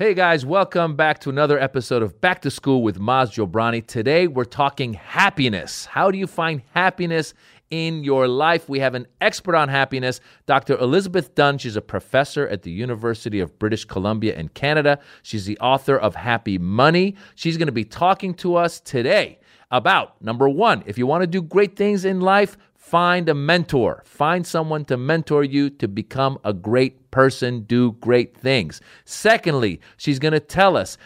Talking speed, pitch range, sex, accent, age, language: 180 wpm, 130-190 Hz, male, American, 40-59, English